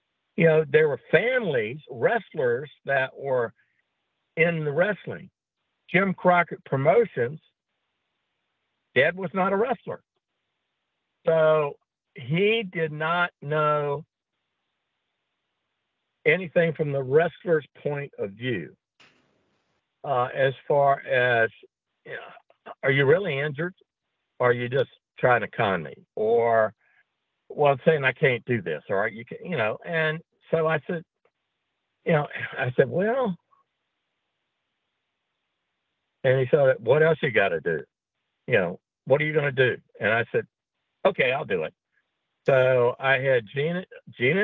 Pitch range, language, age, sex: 140-205 Hz, English, 60-79, male